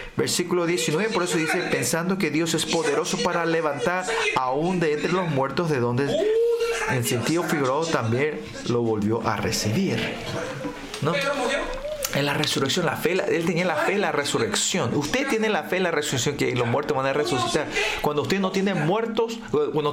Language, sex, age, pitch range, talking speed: Spanish, male, 40-59, 160-215 Hz, 185 wpm